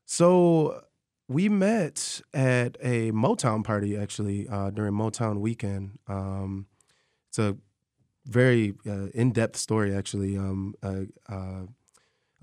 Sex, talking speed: male, 110 wpm